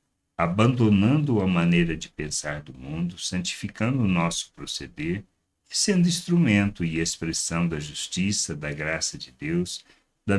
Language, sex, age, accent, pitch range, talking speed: Portuguese, male, 60-79, Brazilian, 85-125 Hz, 125 wpm